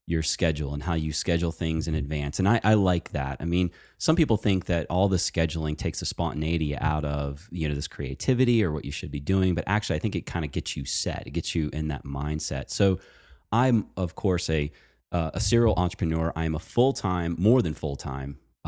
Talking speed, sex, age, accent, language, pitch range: 220 wpm, male, 30-49, American, English, 75-95 Hz